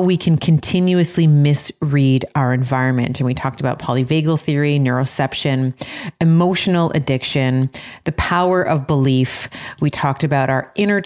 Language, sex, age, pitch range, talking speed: English, female, 30-49, 135-160 Hz, 130 wpm